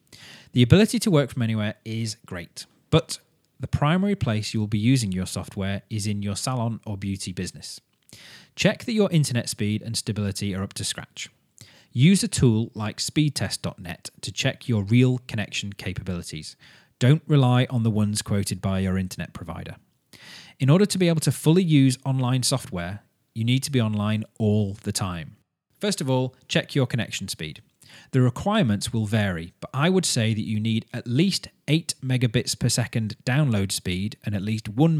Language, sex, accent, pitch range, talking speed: English, male, British, 105-135 Hz, 180 wpm